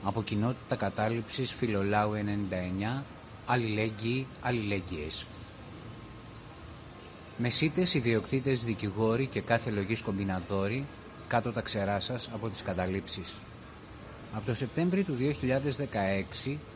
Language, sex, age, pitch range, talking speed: Greek, male, 30-49, 100-125 Hz, 90 wpm